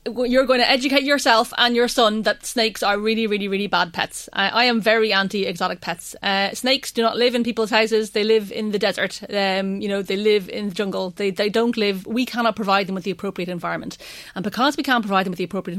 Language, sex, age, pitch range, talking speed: English, female, 30-49, 200-240 Hz, 245 wpm